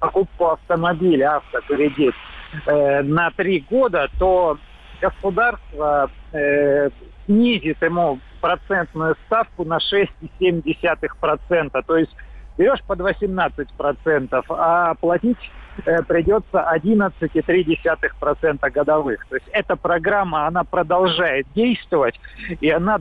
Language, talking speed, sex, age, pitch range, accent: Russian, 95 wpm, male, 40-59, 145-180 Hz, native